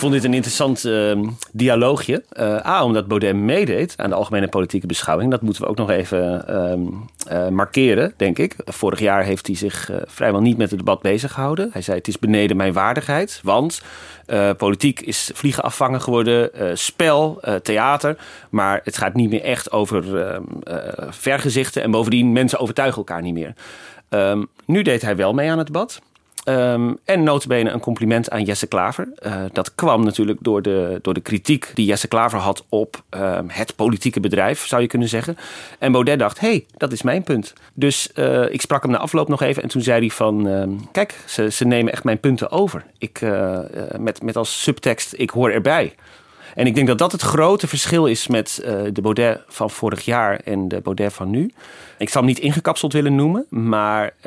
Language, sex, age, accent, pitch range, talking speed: Dutch, male, 40-59, Dutch, 105-135 Hz, 205 wpm